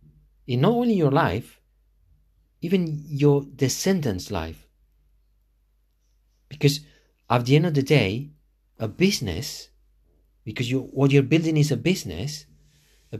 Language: English